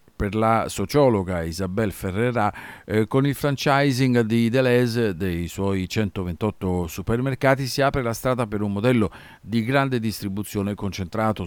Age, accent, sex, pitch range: 50-69, native, male, 90-120 Hz